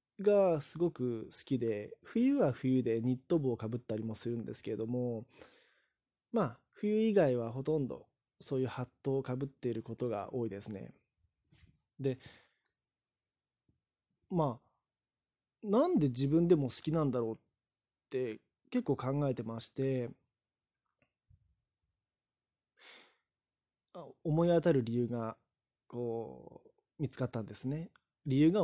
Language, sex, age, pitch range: Japanese, male, 20-39, 120-170 Hz